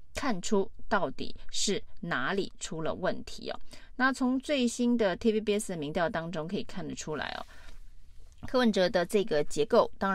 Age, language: 30-49, Chinese